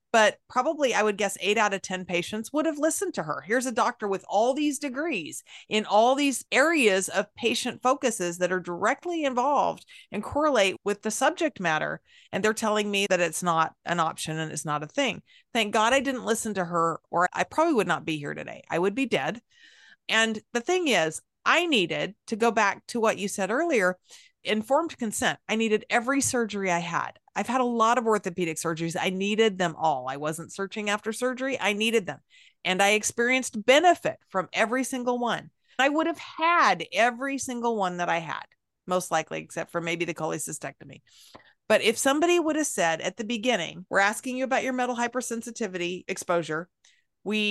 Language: English